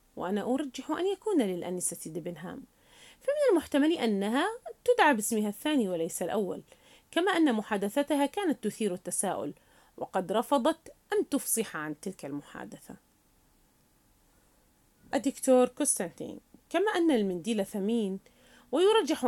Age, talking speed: 30-49, 105 wpm